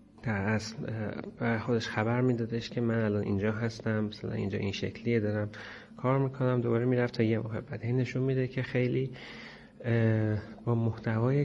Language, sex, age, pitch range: Persian, male, 30-49, 110-130 Hz